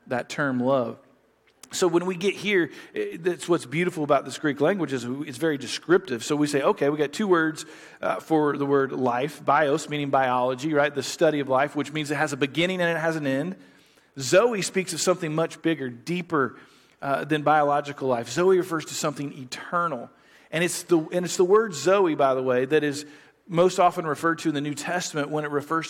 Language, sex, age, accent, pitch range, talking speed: English, male, 40-59, American, 140-170 Hz, 210 wpm